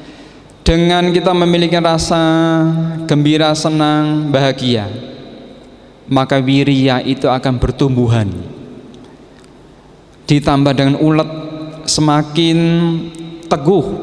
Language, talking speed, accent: Indonesian, 75 wpm, native